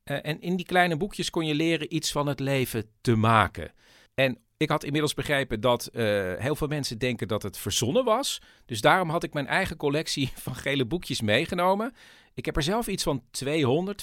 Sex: male